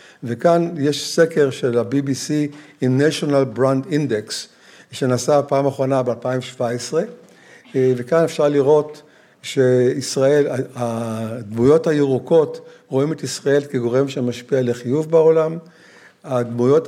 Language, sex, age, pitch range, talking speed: Hebrew, male, 60-79, 125-160 Hz, 95 wpm